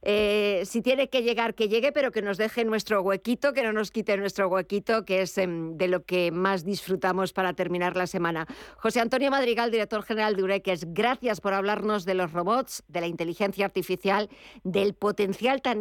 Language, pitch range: Spanish, 185-225 Hz